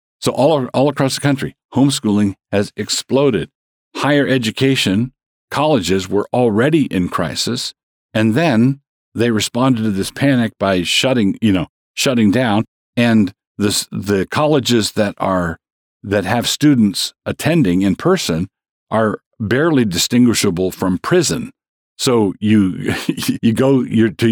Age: 50-69